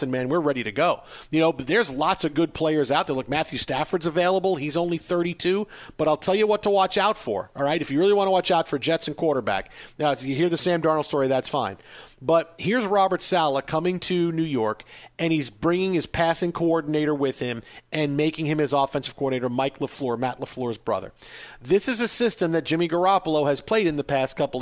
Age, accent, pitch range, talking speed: 40-59, American, 145-180 Hz, 230 wpm